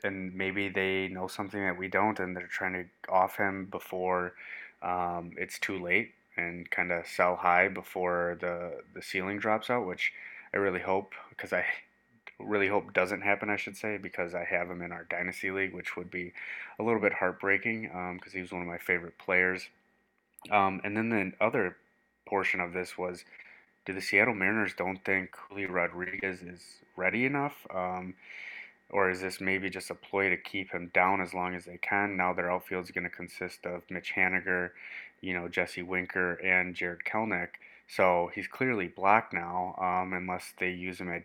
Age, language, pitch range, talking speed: 20-39, English, 90-95 Hz, 190 wpm